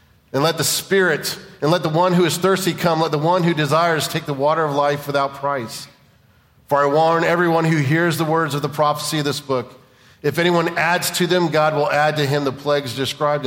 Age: 40-59